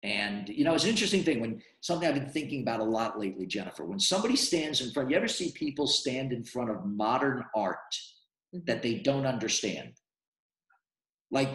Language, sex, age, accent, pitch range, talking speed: English, male, 50-69, American, 115-170 Hz, 190 wpm